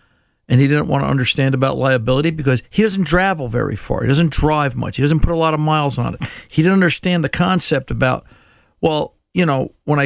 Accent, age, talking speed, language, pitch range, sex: American, 50-69, 225 wpm, English, 120-150 Hz, male